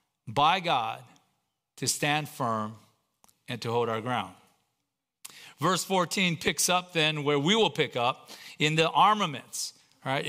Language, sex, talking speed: English, male, 140 wpm